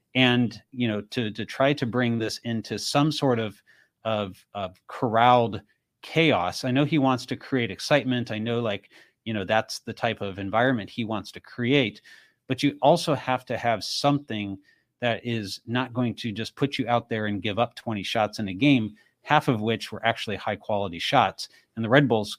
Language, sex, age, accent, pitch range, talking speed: English, male, 30-49, American, 105-130 Hz, 200 wpm